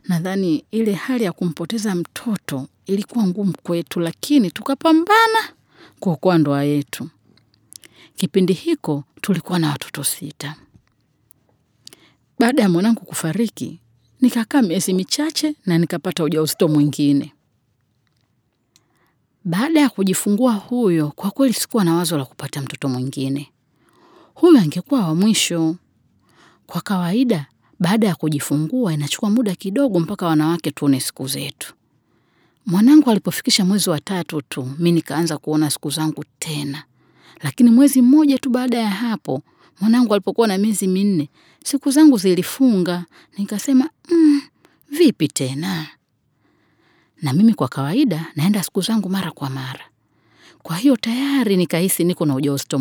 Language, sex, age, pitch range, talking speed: Swahili, female, 40-59, 150-225 Hz, 125 wpm